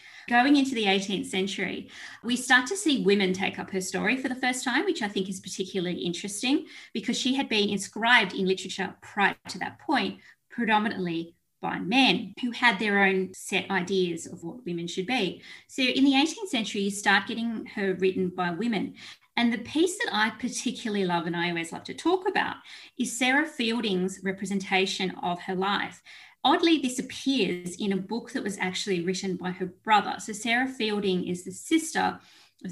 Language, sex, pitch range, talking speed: English, female, 190-255 Hz, 185 wpm